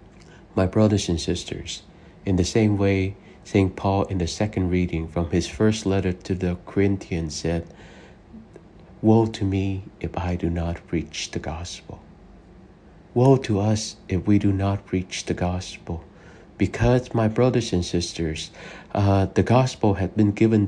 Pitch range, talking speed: 95-135 Hz, 155 wpm